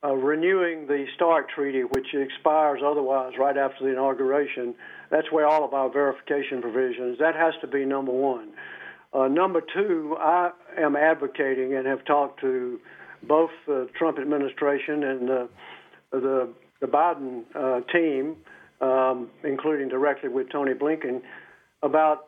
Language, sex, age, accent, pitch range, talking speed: English, male, 60-79, American, 135-160 Hz, 145 wpm